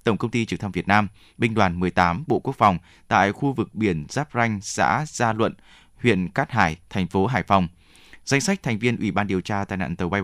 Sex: male